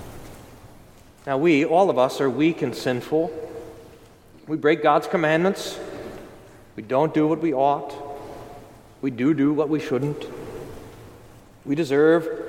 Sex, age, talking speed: male, 40-59, 130 wpm